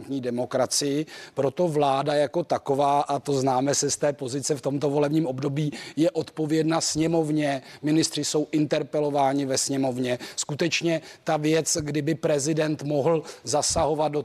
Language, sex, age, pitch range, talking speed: Czech, male, 30-49, 140-155 Hz, 135 wpm